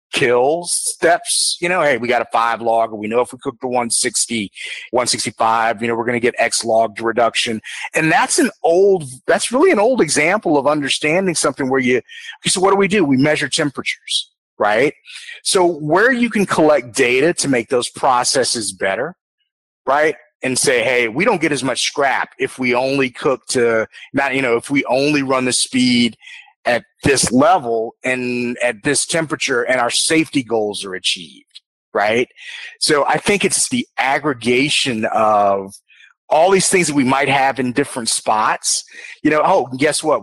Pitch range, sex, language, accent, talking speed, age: 120-180 Hz, male, English, American, 185 wpm, 30-49